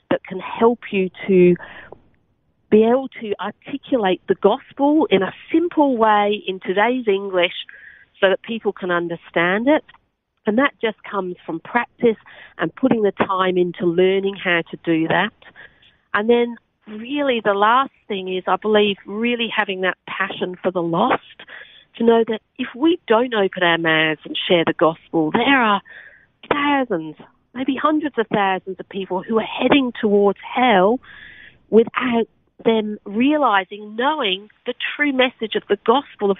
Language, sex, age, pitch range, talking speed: English, female, 40-59, 190-245 Hz, 155 wpm